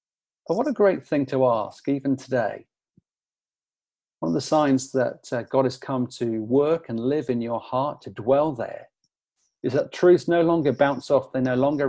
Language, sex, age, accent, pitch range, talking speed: English, male, 40-59, British, 130-165 Hz, 190 wpm